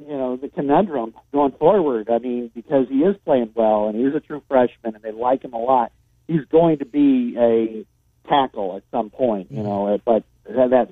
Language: English